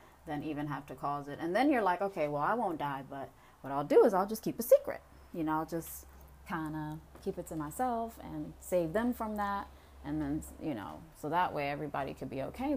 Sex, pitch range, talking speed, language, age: female, 155-220 Hz, 240 wpm, Amharic, 30-49